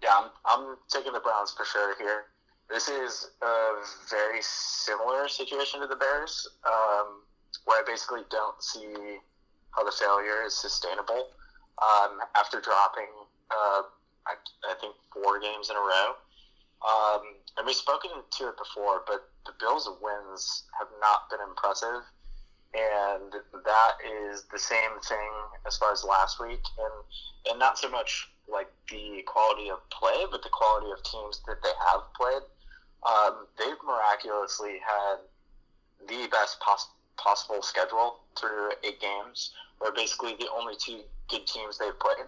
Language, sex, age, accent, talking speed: English, male, 20-39, American, 155 wpm